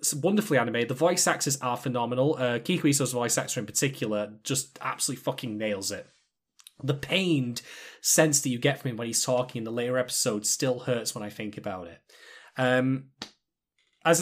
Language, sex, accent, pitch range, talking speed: English, male, British, 120-160 Hz, 175 wpm